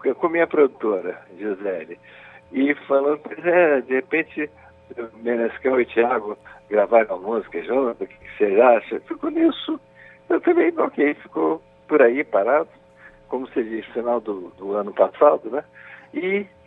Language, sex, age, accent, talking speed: Portuguese, male, 60-79, Brazilian, 160 wpm